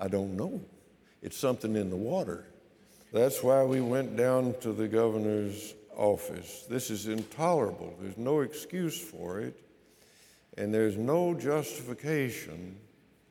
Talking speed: 130 wpm